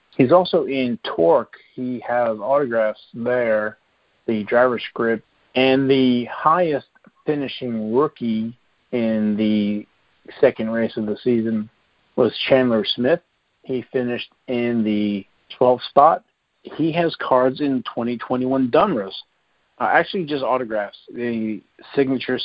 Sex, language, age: male, English, 50-69